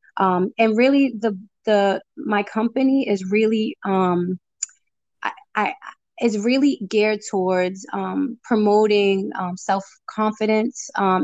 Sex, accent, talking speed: female, American, 115 wpm